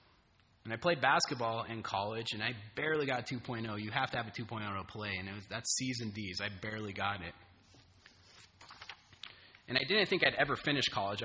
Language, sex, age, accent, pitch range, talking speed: English, male, 30-49, American, 95-125 Hz, 205 wpm